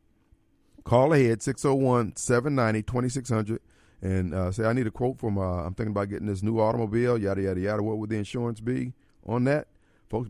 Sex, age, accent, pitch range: male, 50-69, American, 95-130 Hz